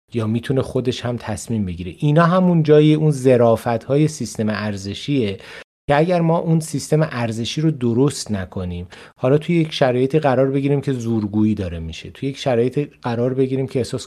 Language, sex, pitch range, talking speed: Persian, male, 115-140 Hz, 170 wpm